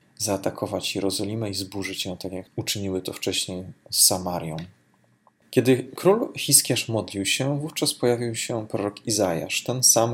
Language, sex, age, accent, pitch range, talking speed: Polish, male, 20-39, native, 95-120 Hz, 140 wpm